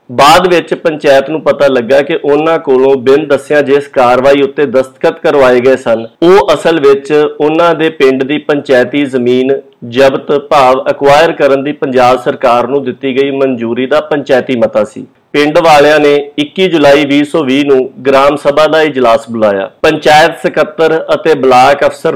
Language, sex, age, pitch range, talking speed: Punjabi, male, 50-69, 130-160 Hz, 160 wpm